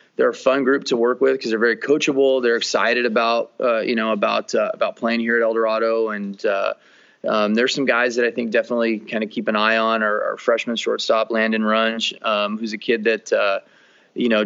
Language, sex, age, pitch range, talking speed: English, male, 20-39, 110-120 Hz, 225 wpm